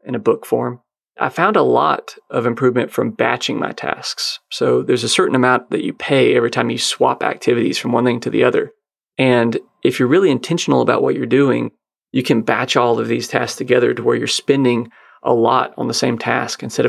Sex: male